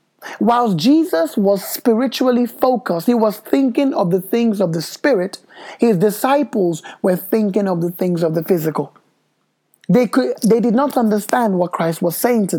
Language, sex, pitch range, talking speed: English, male, 170-235 Hz, 165 wpm